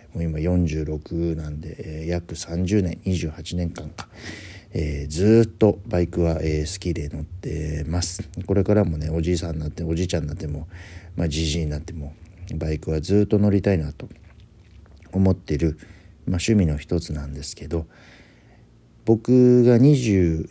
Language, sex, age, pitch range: Japanese, male, 50-69, 80-105 Hz